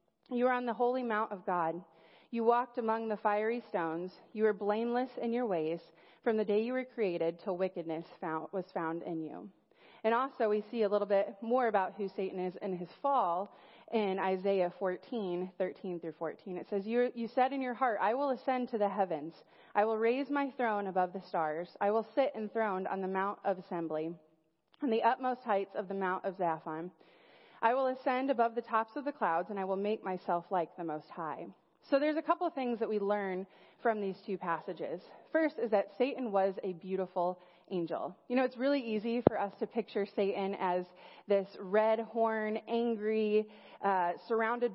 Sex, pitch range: female, 185-235 Hz